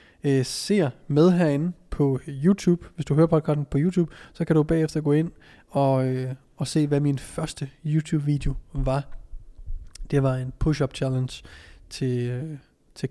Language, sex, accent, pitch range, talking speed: Danish, male, native, 130-160 Hz, 160 wpm